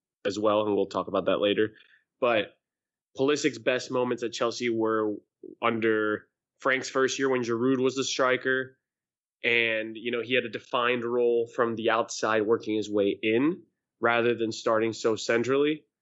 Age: 20-39